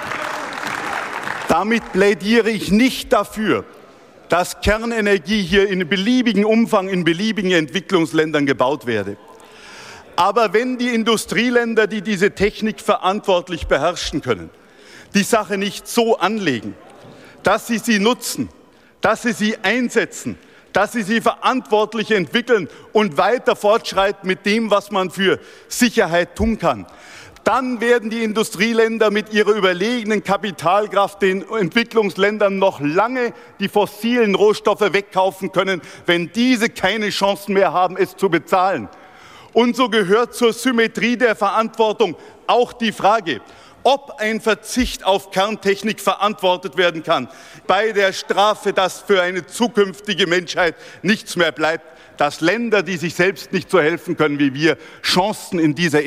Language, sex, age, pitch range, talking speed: German, male, 50-69, 185-225 Hz, 135 wpm